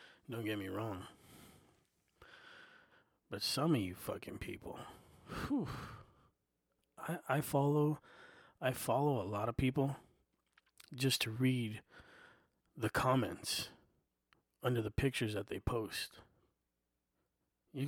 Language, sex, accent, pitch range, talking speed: English, male, American, 110-140 Hz, 105 wpm